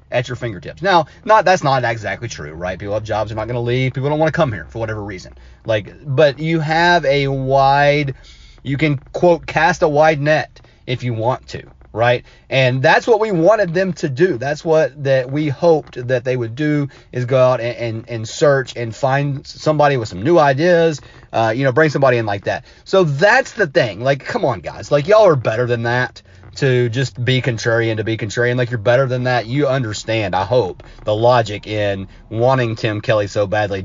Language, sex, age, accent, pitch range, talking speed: English, male, 30-49, American, 115-150 Hz, 215 wpm